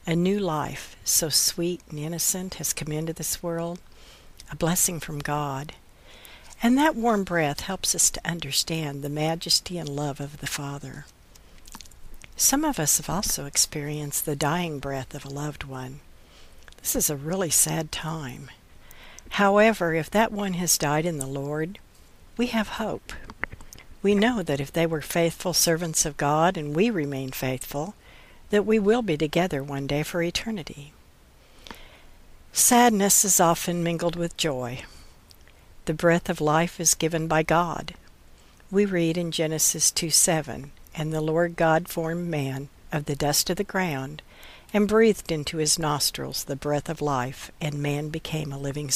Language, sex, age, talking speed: English, female, 60-79, 160 wpm